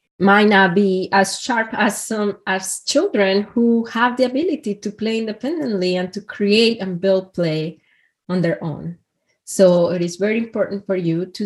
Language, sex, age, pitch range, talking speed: English, female, 20-39, 180-225 Hz, 170 wpm